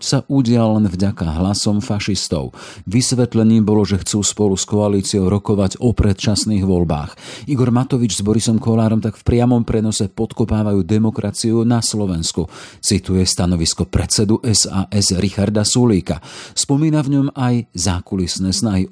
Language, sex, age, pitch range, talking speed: Slovak, male, 40-59, 95-115 Hz, 135 wpm